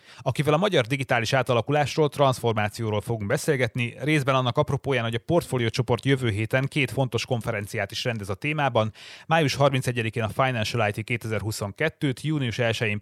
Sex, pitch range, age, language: male, 110-135 Hz, 30-49, Hungarian